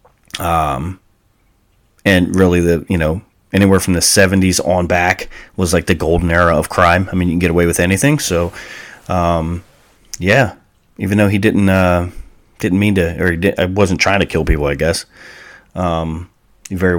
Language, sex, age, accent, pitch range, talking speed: English, male, 30-49, American, 85-100 Hz, 175 wpm